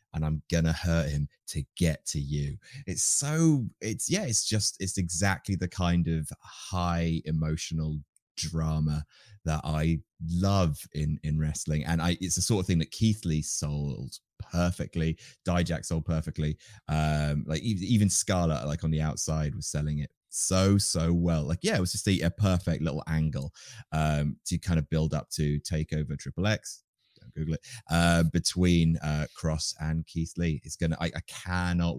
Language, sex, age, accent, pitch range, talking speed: English, male, 30-49, British, 80-95 Hz, 175 wpm